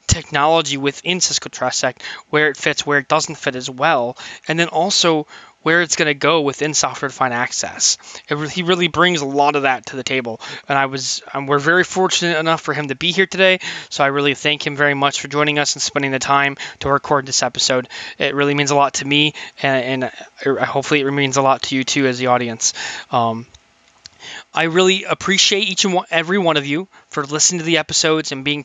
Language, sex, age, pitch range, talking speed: English, male, 20-39, 140-170 Hz, 215 wpm